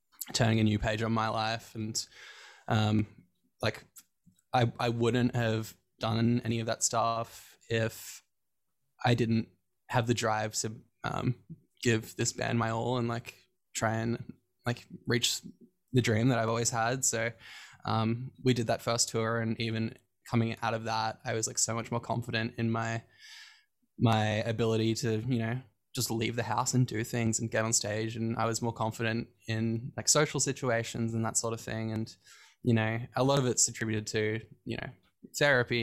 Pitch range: 110-120 Hz